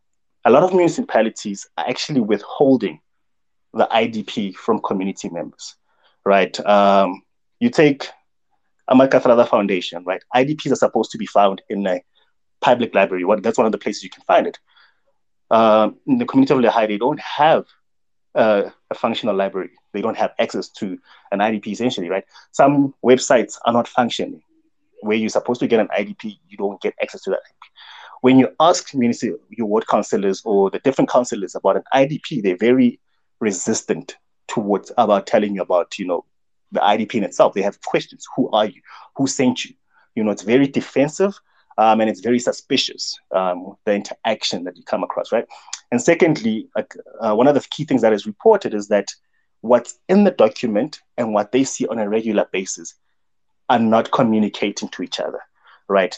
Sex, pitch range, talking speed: male, 100-140 Hz, 180 wpm